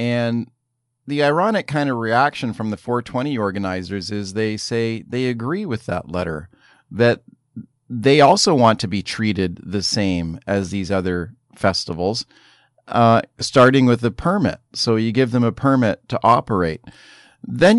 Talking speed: 150 wpm